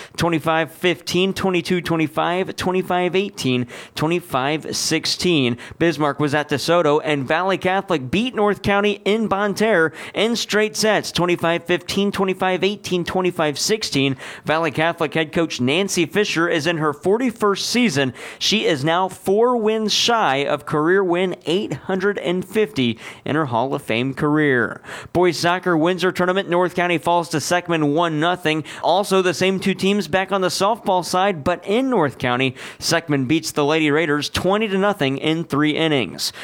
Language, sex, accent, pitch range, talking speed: English, male, American, 150-190 Hz, 140 wpm